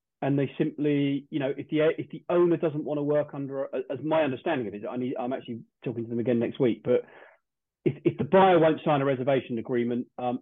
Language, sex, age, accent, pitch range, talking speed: English, male, 30-49, British, 130-160 Hz, 240 wpm